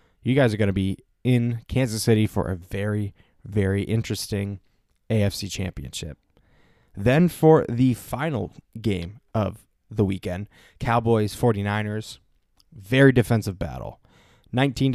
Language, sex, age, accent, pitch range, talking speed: English, male, 20-39, American, 100-120 Hz, 120 wpm